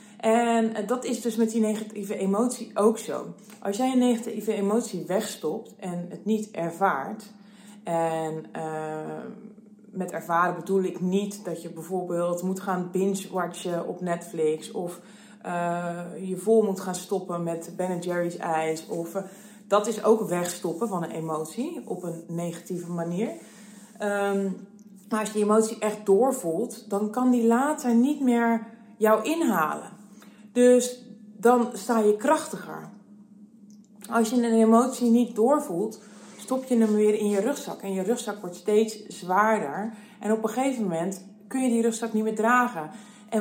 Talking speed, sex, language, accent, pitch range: 155 wpm, female, Dutch, Dutch, 195-235 Hz